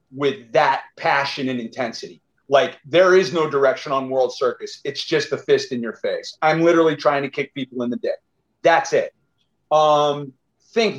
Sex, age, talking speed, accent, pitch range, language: male, 40-59, 180 wpm, American, 140-170 Hz, English